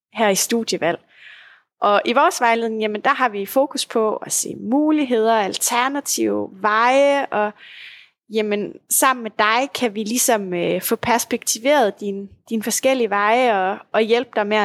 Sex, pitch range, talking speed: female, 205-265 Hz, 150 wpm